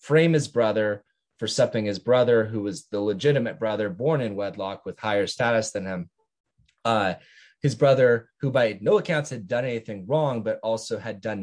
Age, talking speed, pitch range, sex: 20-39, 185 wpm, 110-145 Hz, male